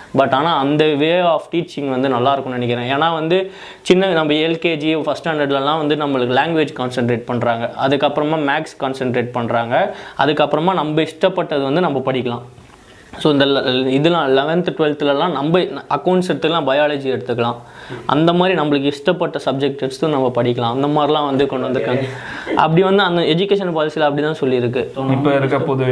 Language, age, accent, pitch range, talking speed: Tamil, 20-39, native, 135-160 Hz, 120 wpm